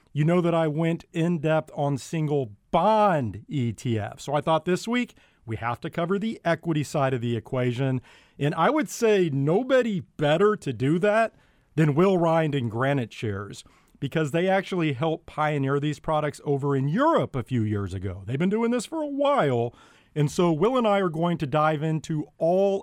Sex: male